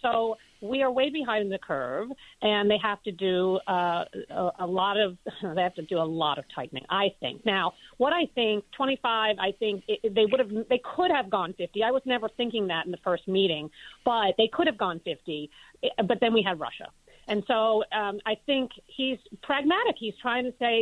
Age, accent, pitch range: 40-59, American, 185-245 Hz